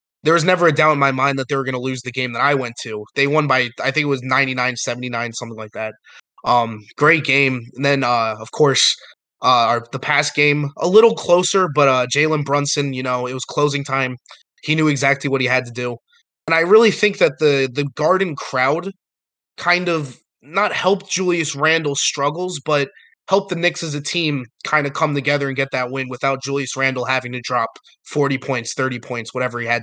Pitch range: 125-155 Hz